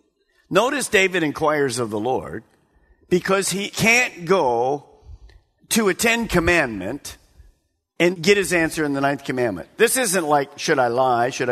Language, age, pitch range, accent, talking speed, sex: English, 50-69, 140-200 Hz, American, 150 wpm, male